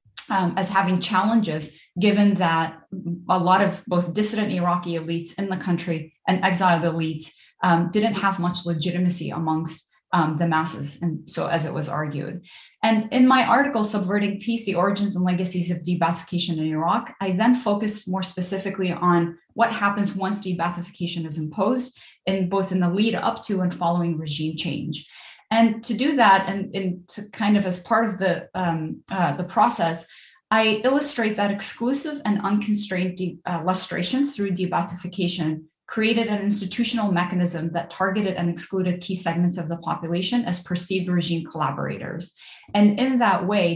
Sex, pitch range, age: female, 170-205 Hz, 30-49